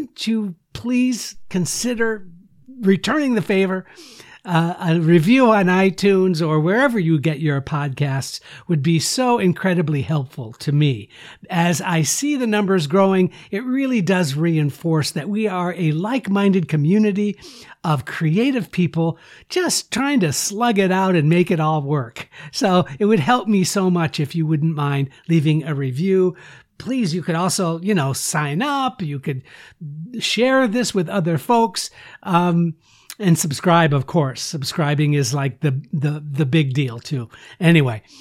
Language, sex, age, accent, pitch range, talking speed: English, male, 60-79, American, 155-195 Hz, 155 wpm